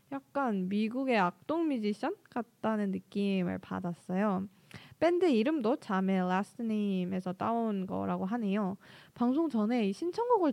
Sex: female